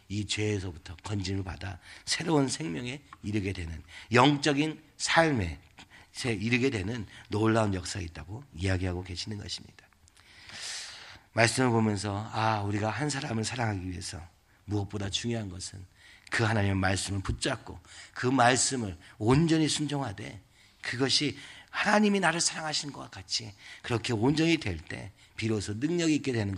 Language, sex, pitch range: Korean, male, 100-135 Hz